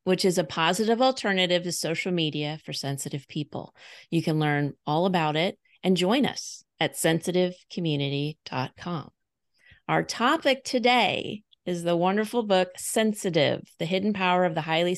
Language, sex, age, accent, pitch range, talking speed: English, female, 30-49, American, 150-190 Hz, 145 wpm